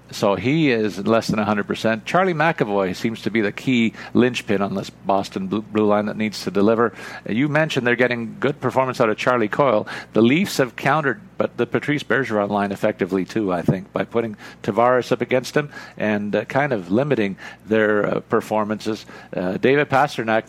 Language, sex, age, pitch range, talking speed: English, male, 50-69, 105-130 Hz, 195 wpm